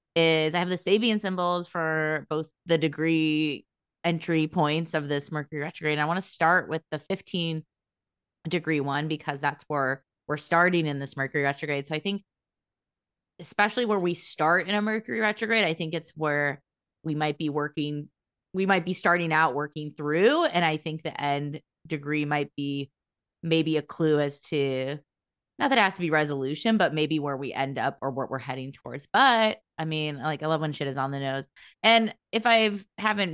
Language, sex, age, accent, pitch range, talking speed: English, female, 20-39, American, 145-170 Hz, 195 wpm